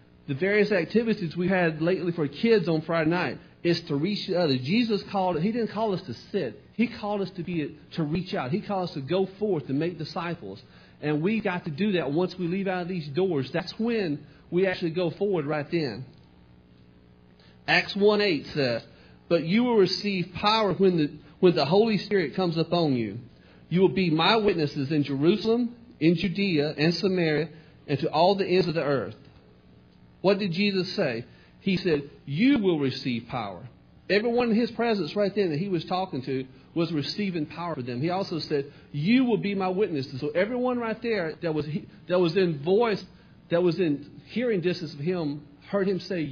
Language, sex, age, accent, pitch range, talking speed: English, male, 40-59, American, 150-200 Hz, 200 wpm